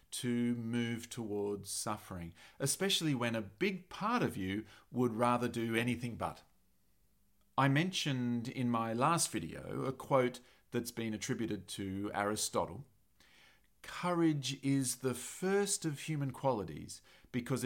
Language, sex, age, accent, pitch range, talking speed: English, male, 40-59, Australian, 105-135 Hz, 125 wpm